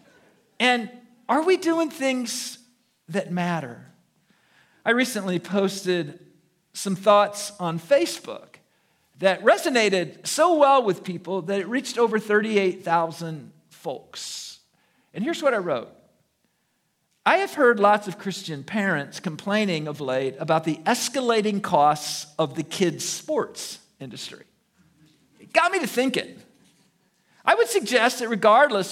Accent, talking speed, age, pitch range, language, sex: American, 125 wpm, 50-69, 170-245 Hz, English, male